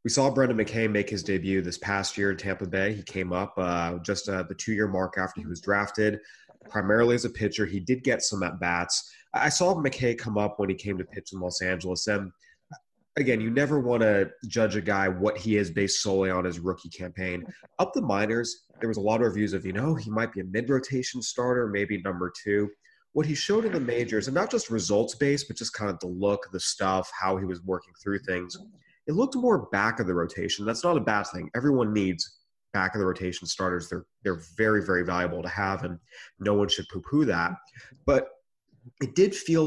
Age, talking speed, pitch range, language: 30-49, 225 wpm, 95-120 Hz, English